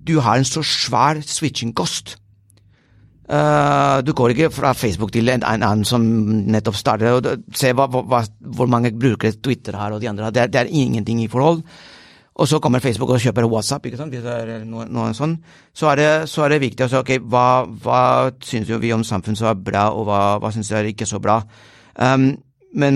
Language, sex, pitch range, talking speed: English, male, 110-130 Hz, 225 wpm